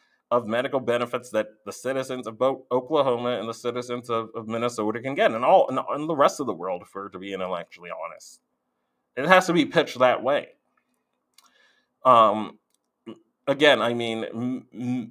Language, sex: English, male